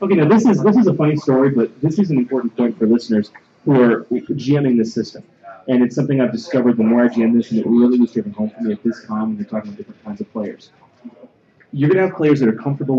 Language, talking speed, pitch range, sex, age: English, 275 wpm, 120-165 Hz, male, 30-49